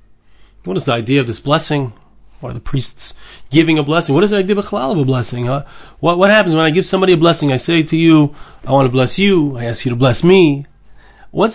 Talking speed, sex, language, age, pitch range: 260 wpm, male, English, 30-49, 125-190 Hz